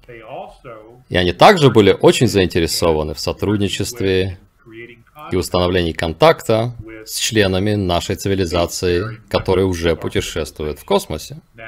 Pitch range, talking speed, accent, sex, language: 95-125 Hz, 105 wpm, native, male, Russian